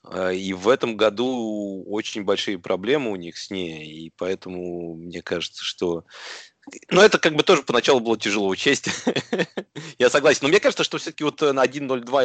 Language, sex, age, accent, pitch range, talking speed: Russian, male, 30-49, native, 105-130 Hz, 170 wpm